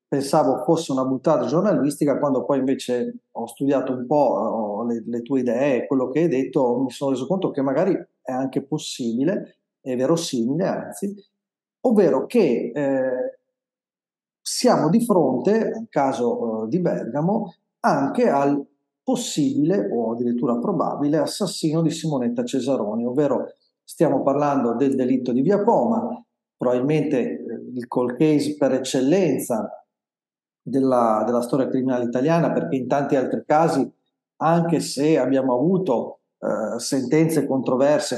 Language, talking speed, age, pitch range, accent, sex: Italian, 135 wpm, 40-59, 125-165 Hz, native, male